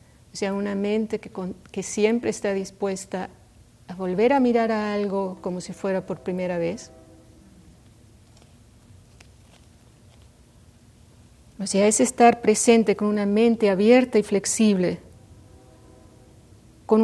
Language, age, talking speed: English, 40-59, 115 wpm